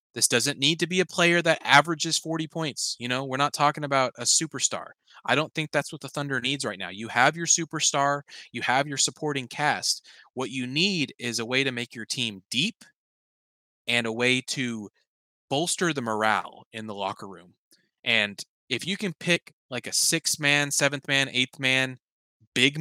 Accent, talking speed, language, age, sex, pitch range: American, 195 wpm, English, 20-39, male, 125-155 Hz